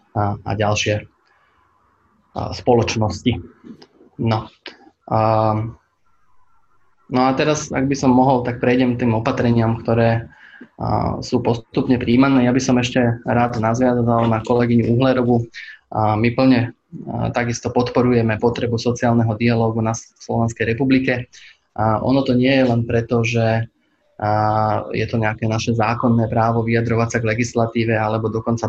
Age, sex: 20-39, male